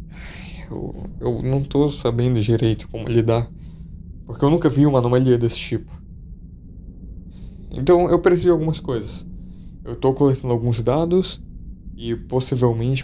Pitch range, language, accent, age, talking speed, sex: 110-140 Hz, Portuguese, Brazilian, 20-39, 135 wpm, male